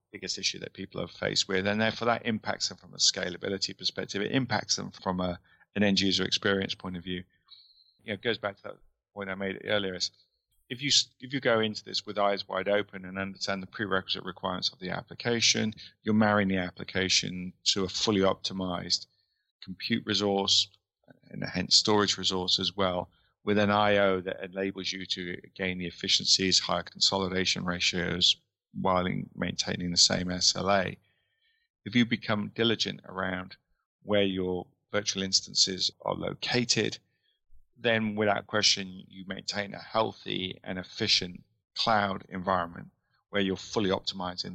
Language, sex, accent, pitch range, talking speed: English, male, British, 95-105 Hz, 160 wpm